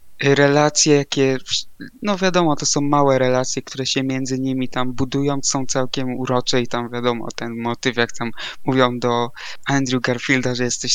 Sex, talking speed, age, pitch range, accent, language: male, 165 wpm, 20-39, 125-140 Hz, native, Polish